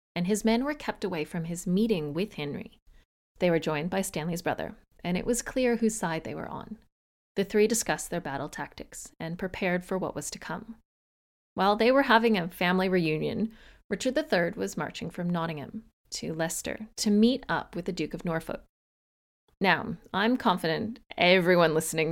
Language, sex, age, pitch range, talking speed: English, female, 30-49, 175-230 Hz, 180 wpm